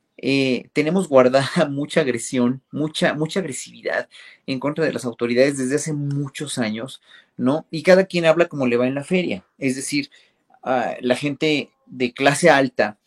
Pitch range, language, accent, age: 125-155 Hz, Spanish, Mexican, 40-59